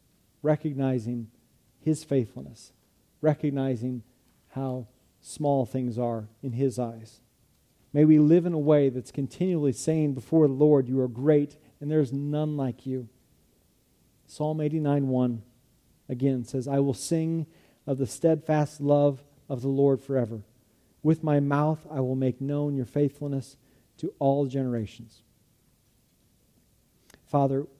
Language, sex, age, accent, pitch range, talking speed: English, male, 40-59, American, 125-150 Hz, 130 wpm